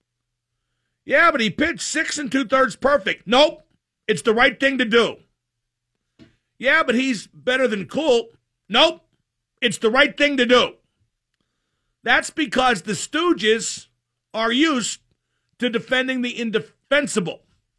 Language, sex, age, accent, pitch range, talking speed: English, male, 50-69, American, 195-260 Hz, 130 wpm